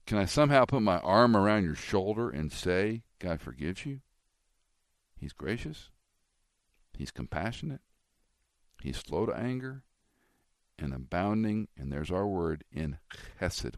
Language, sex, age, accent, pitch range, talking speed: English, male, 50-69, American, 75-120 Hz, 130 wpm